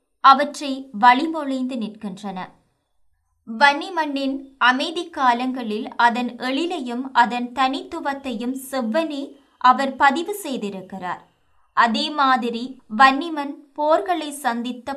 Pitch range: 235-290 Hz